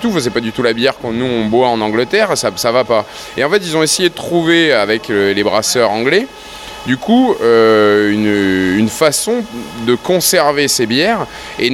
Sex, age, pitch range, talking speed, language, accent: male, 20-39, 110-145 Hz, 210 wpm, French, French